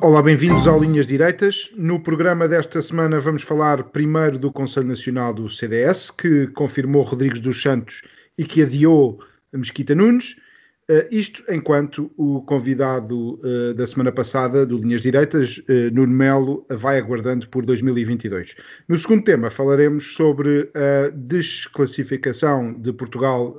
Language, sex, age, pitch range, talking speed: Portuguese, male, 40-59, 130-160 Hz, 135 wpm